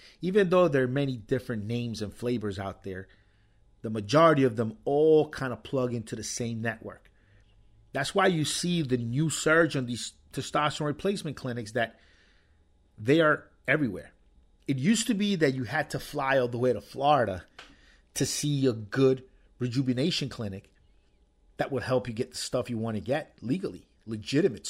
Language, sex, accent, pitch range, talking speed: English, male, American, 100-135 Hz, 175 wpm